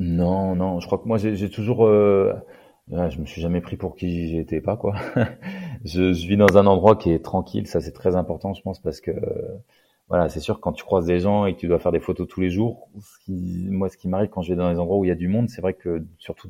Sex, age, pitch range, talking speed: male, 30-49, 85-100 Hz, 285 wpm